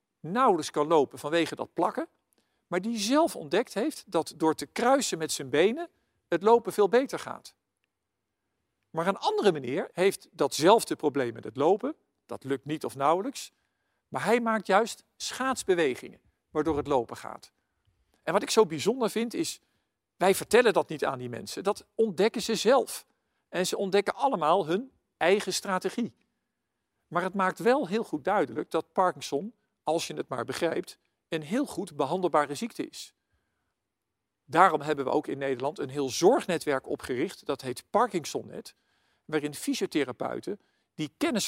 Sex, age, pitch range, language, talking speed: male, 50-69, 150-210 Hz, Dutch, 160 wpm